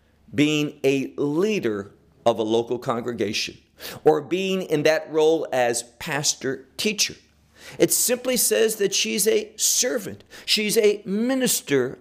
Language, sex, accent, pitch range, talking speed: English, male, American, 140-220 Hz, 125 wpm